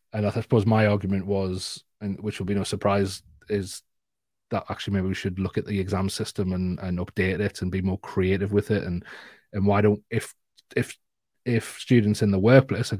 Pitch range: 95-120 Hz